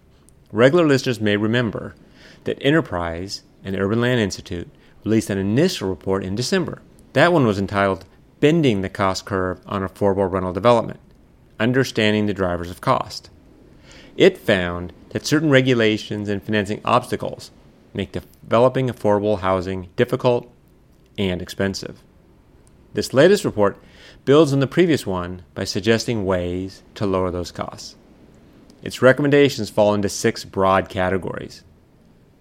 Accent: American